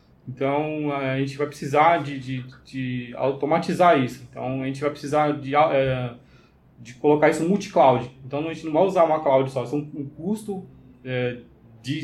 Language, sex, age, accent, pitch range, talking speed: Portuguese, male, 20-39, Brazilian, 130-150 Hz, 165 wpm